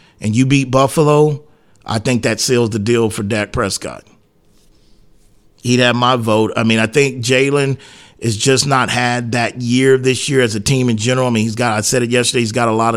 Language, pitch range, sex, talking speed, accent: English, 105-125 Hz, male, 220 wpm, American